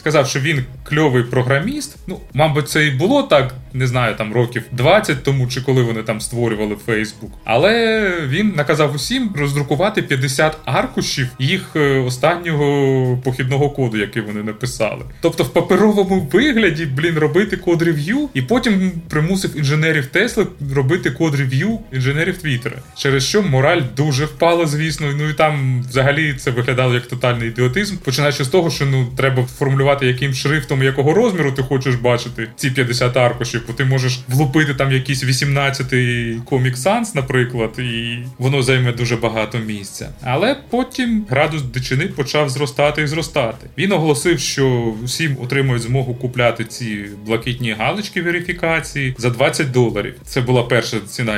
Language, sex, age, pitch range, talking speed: Ukrainian, male, 20-39, 125-160 Hz, 145 wpm